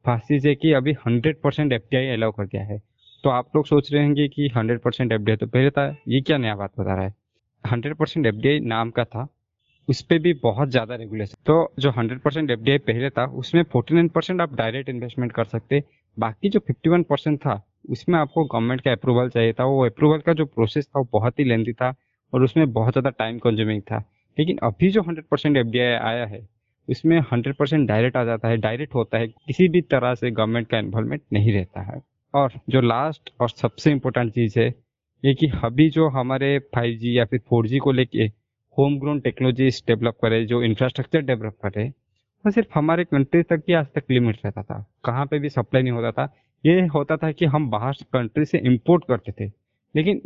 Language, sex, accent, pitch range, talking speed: Hindi, male, native, 115-145 Hz, 200 wpm